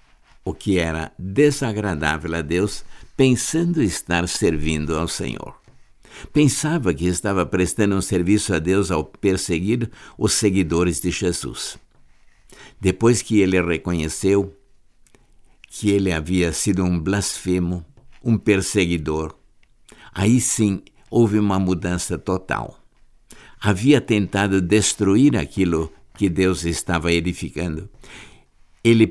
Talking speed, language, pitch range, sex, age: 105 wpm, Portuguese, 85-110 Hz, male, 60-79